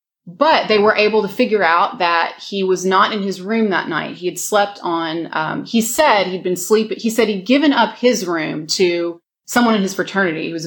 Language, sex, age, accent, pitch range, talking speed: English, female, 30-49, American, 175-215 Hz, 225 wpm